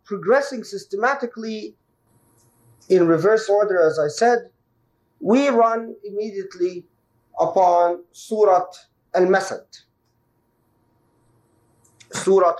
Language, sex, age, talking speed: English, male, 50-69, 70 wpm